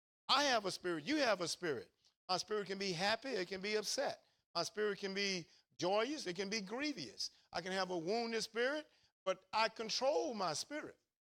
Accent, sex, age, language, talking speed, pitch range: American, male, 50-69, English, 200 wpm, 165-215 Hz